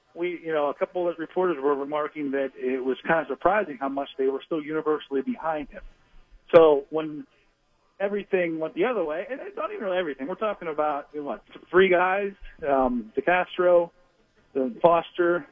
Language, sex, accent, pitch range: English, male, American, 140-190 Hz